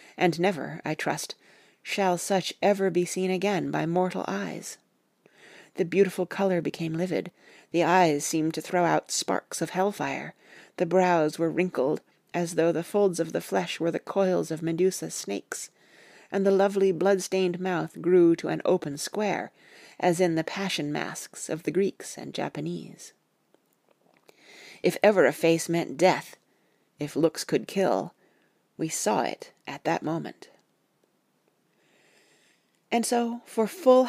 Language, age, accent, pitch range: English, 40-59, American, 155-190 Hz